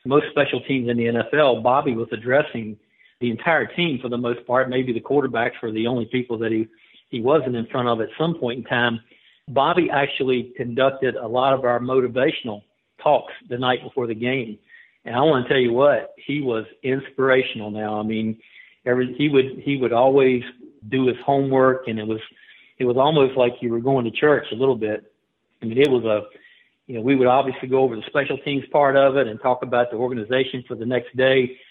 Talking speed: 215 wpm